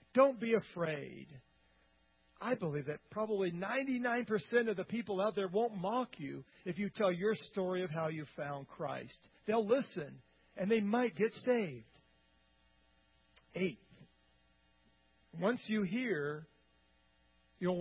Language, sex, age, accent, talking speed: English, male, 50-69, American, 130 wpm